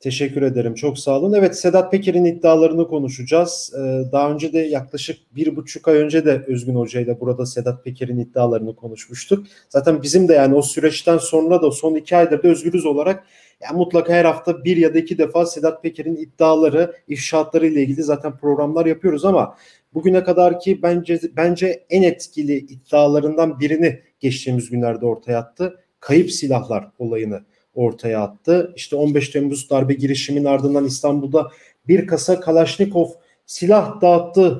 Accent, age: Turkish, 40-59